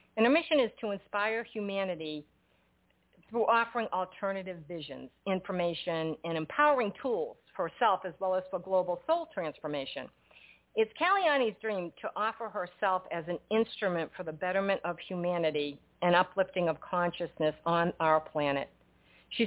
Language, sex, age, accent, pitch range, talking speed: English, female, 50-69, American, 160-200 Hz, 140 wpm